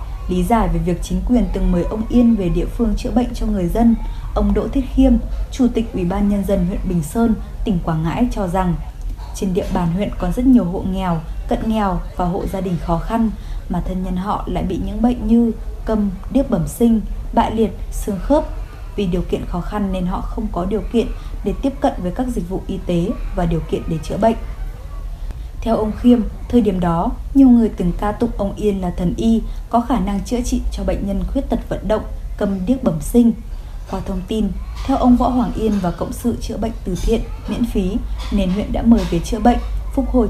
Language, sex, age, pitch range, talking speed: Vietnamese, female, 20-39, 185-235 Hz, 230 wpm